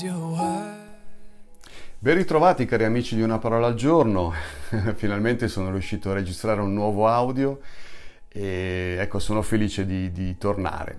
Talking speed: 130 wpm